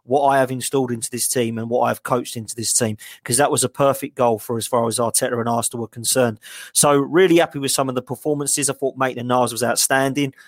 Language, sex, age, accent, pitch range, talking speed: English, male, 30-49, British, 125-145 Hz, 250 wpm